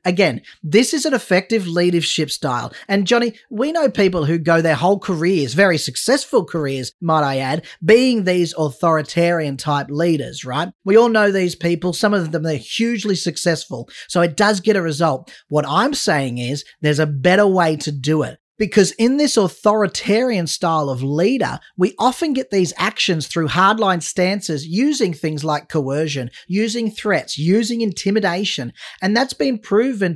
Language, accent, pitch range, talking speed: English, Australian, 155-210 Hz, 165 wpm